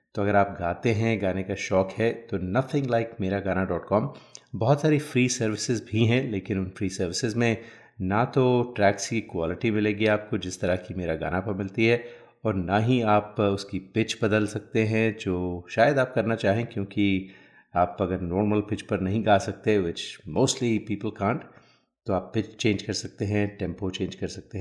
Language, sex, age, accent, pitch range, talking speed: Hindi, male, 30-49, native, 95-115 Hz, 195 wpm